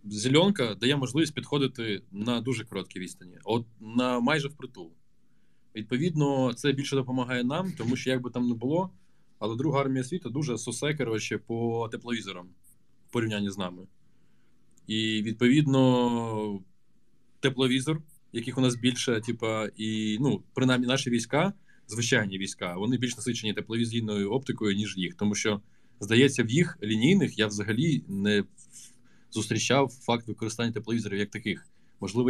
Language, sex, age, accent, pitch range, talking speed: Ukrainian, male, 20-39, native, 110-130 Hz, 135 wpm